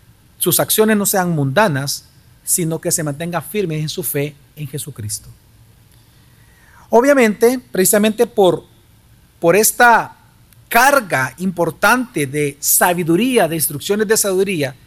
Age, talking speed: 40-59, 115 wpm